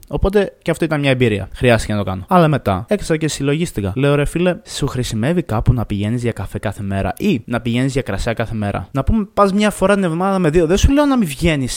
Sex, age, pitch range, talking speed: male, 20-39, 115-175 Hz, 250 wpm